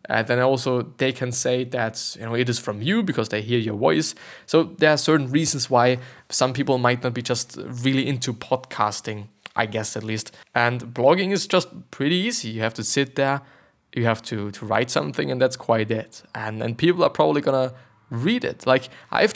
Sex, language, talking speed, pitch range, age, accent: male, English, 210 wpm, 120-145 Hz, 20-39, German